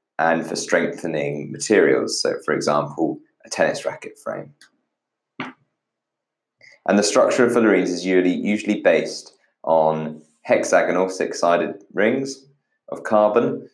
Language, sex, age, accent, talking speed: English, male, 20-39, British, 115 wpm